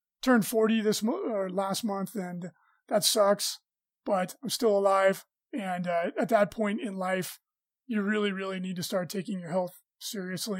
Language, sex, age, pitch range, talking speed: English, male, 20-39, 190-225 Hz, 170 wpm